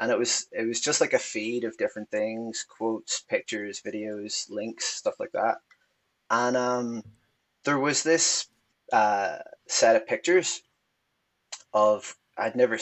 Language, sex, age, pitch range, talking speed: English, male, 20-39, 110-145 Hz, 145 wpm